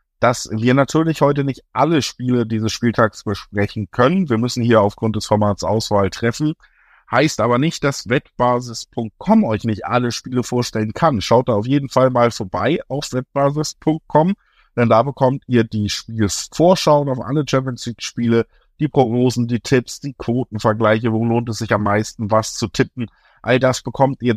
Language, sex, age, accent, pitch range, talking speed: German, male, 50-69, German, 105-130 Hz, 165 wpm